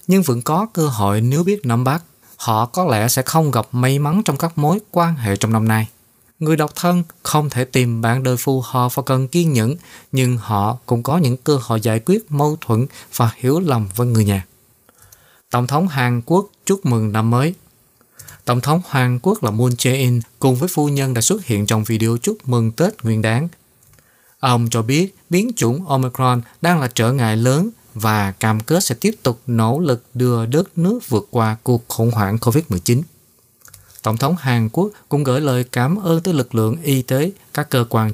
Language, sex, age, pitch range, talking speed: Vietnamese, male, 20-39, 115-150 Hz, 205 wpm